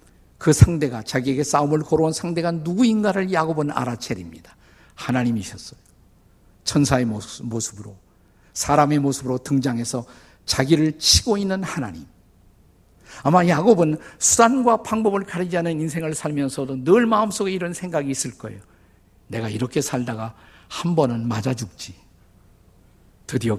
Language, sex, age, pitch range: Korean, male, 50-69, 105-170 Hz